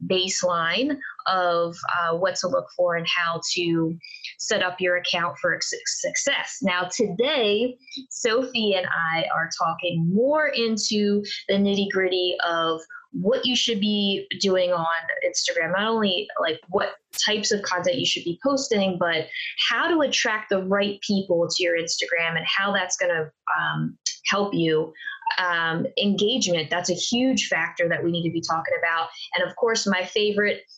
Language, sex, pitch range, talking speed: English, female, 170-225 Hz, 160 wpm